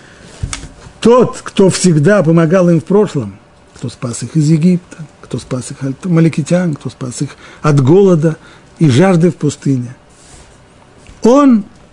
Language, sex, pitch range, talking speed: Russian, male, 130-180 Hz, 135 wpm